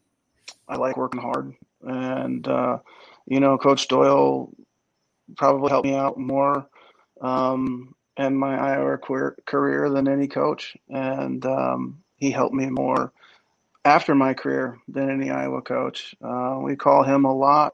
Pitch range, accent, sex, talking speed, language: 130-140 Hz, American, male, 145 wpm, English